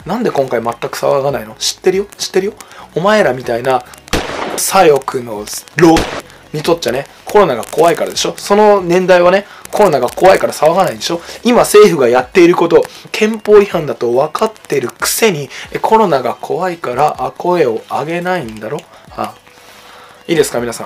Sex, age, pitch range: male, 20-39, 160-245 Hz